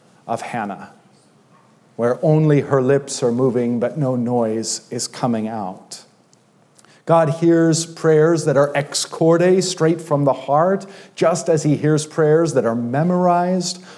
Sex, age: male, 40-59